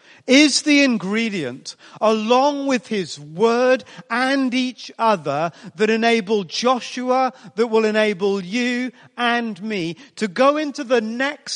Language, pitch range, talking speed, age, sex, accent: English, 185-250 Hz, 125 wpm, 40-59, male, British